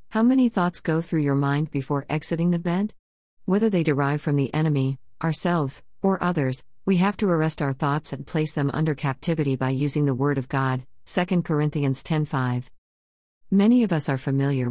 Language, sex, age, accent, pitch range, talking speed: English, female, 50-69, American, 135-170 Hz, 190 wpm